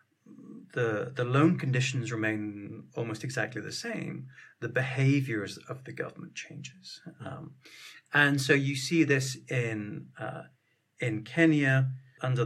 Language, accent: English, British